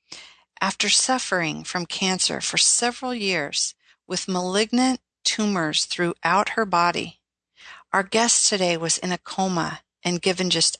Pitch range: 165-210 Hz